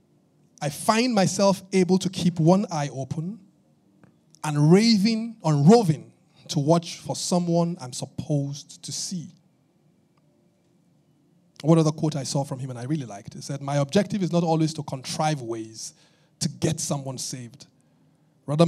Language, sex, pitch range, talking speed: English, male, 145-175 Hz, 150 wpm